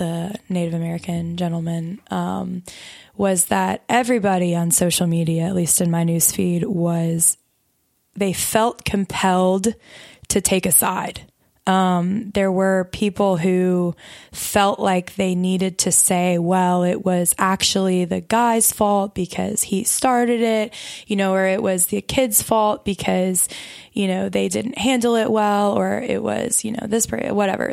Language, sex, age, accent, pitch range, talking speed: English, female, 20-39, American, 185-220 Hz, 150 wpm